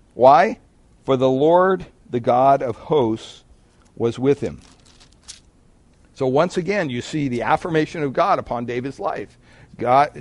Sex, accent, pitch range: male, American, 115-150 Hz